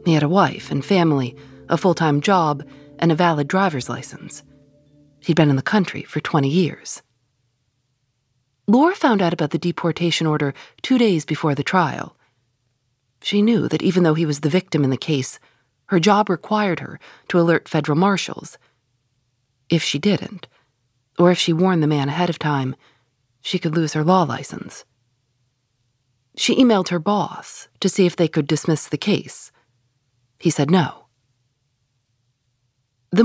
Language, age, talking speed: English, 40-59, 160 wpm